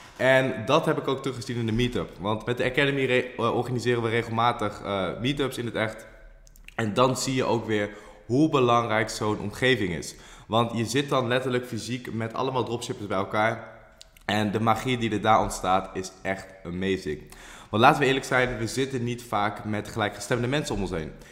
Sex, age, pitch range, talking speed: male, 20-39, 105-120 Hz, 195 wpm